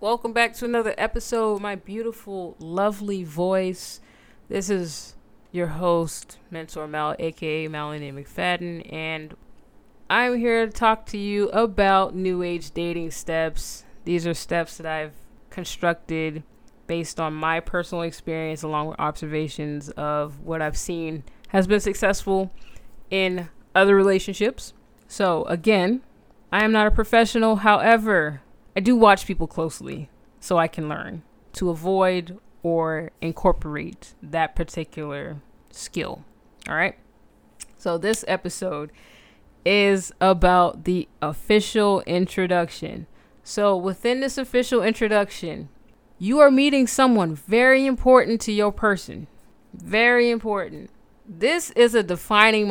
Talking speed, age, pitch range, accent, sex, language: 125 wpm, 20-39, 160-215 Hz, American, female, English